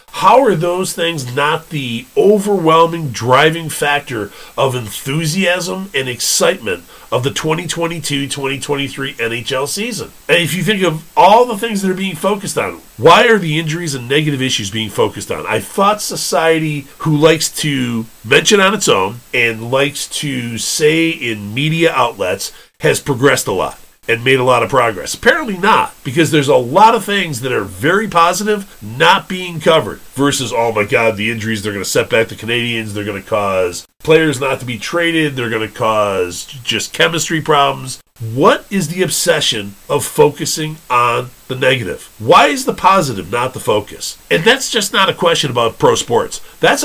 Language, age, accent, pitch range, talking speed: English, 40-59, American, 120-170 Hz, 175 wpm